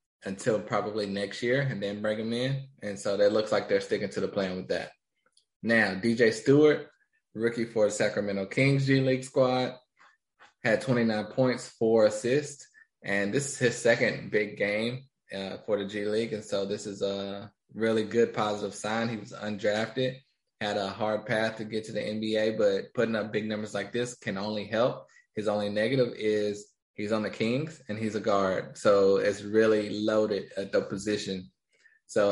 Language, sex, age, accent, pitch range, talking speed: English, male, 20-39, American, 105-120 Hz, 185 wpm